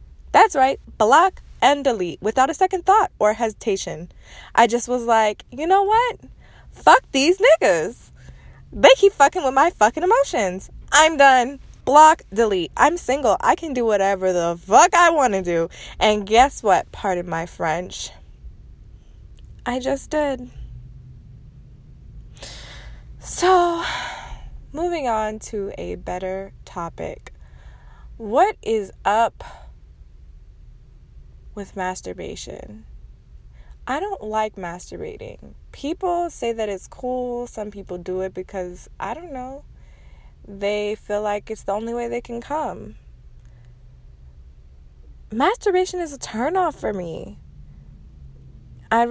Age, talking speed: 20-39, 120 wpm